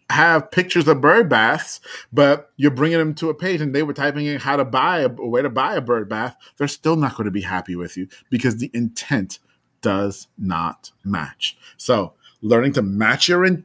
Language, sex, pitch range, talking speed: English, male, 120-150 Hz, 210 wpm